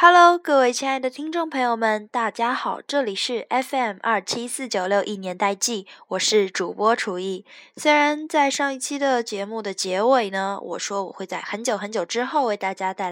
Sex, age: female, 10-29